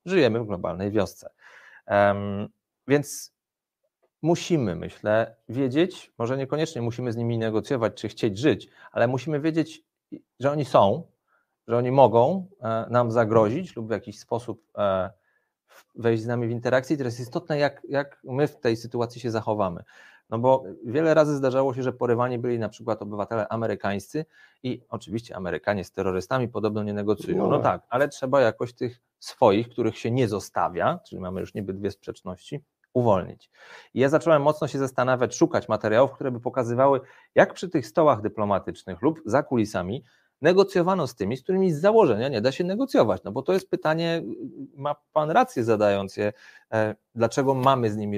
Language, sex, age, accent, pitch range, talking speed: Polish, male, 40-59, native, 105-145 Hz, 165 wpm